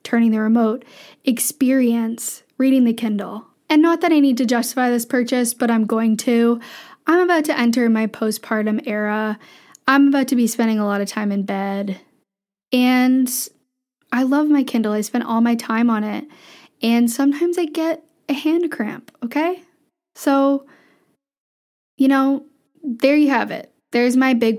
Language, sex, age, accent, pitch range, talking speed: English, female, 10-29, American, 220-275 Hz, 165 wpm